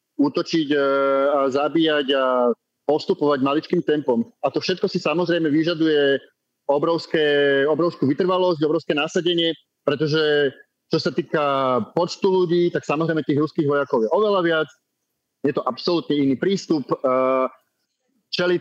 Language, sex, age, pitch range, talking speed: Slovak, male, 30-49, 145-175 Hz, 125 wpm